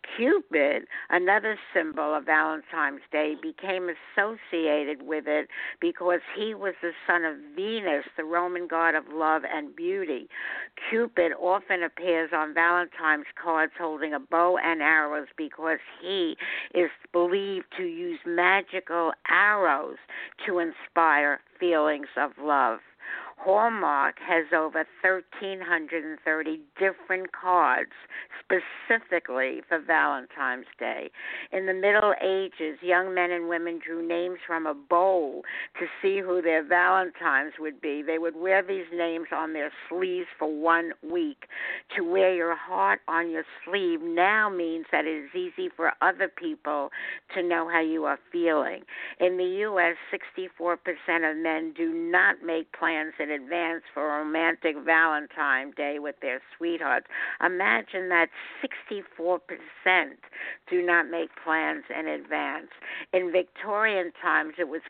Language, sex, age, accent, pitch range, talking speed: English, female, 60-79, American, 160-190 Hz, 135 wpm